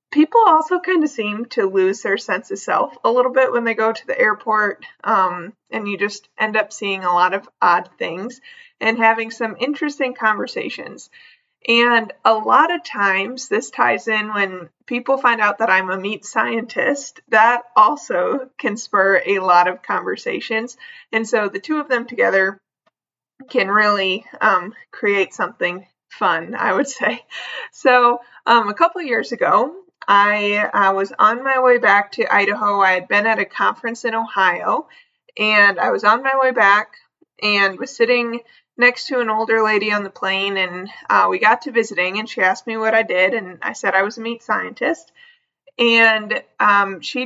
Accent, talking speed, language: American, 185 wpm, English